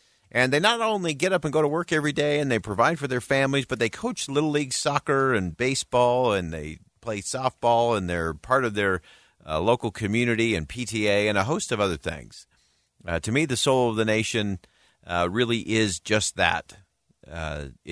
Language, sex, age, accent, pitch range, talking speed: English, male, 50-69, American, 85-125 Hz, 200 wpm